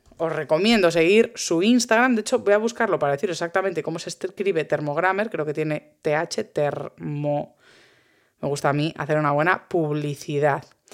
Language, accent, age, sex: Spanish, Spanish, 20-39, female